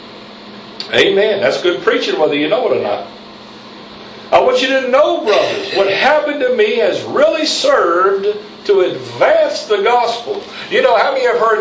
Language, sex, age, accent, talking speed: English, male, 60-79, American, 175 wpm